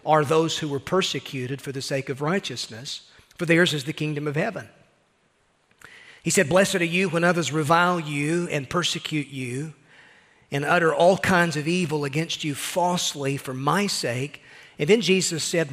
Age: 40-59